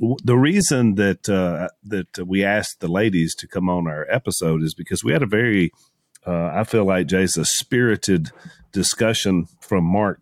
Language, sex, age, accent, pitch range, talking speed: English, male, 40-59, American, 85-110 Hz, 170 wpm